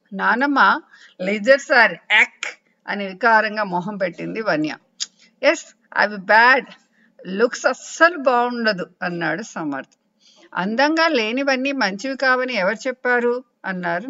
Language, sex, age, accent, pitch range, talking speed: English, female, 50-69, Indian, 195-275 Hz, 130 wpm